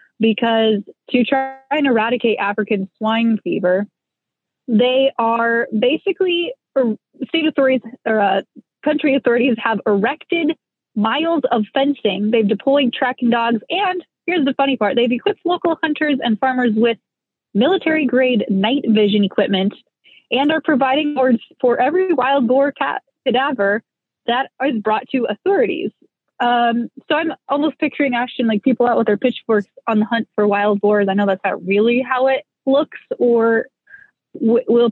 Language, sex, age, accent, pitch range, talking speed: English, female, 20-39, American, 220-280 Hz, 150 wpm